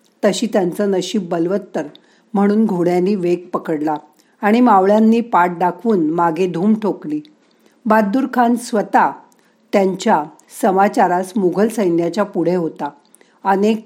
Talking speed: 105 wpm